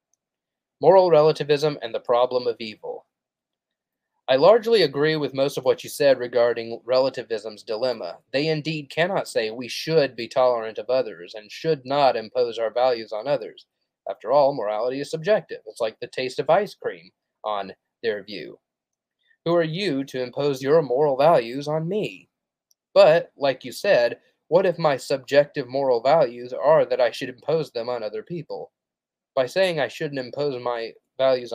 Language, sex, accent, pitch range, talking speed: English, male, American, 125-185 Hz, 165 wpm